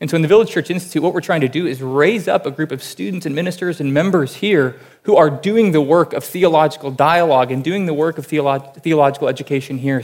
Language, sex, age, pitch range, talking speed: English, male, 20-39, 135-155 Hz, 240 wpm